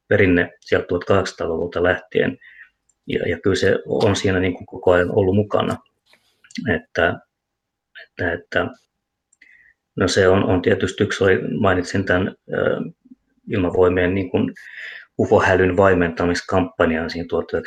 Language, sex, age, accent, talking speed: Finnish, male, 30-49, native, 110 wpm